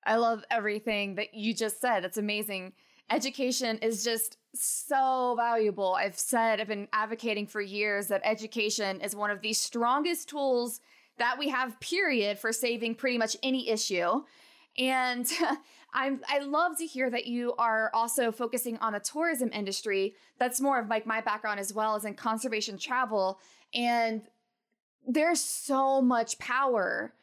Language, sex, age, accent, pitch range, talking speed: English, female, 20-39, American, 215-255 Hz, 155 wpm